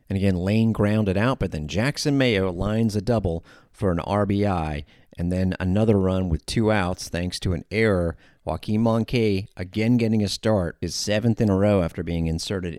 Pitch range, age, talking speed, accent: 85-100 Hz, 40-59, 190 wpm, American